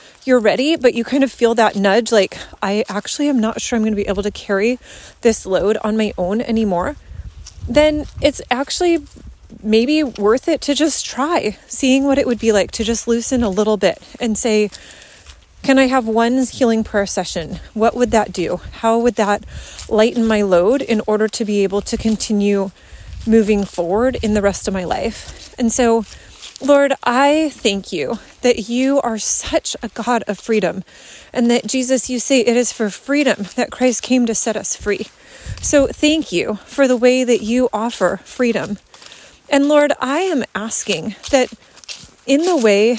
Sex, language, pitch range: female, English, 215-270 Hz